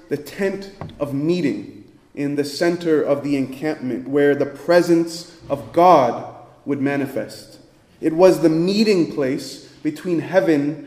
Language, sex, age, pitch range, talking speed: English, male, 30-49, 150-195 Hz, 135 wpm